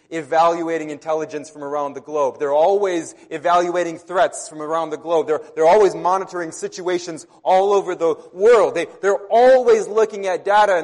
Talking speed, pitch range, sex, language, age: 165 wpm, 165-230 Hz, male, English, 30-49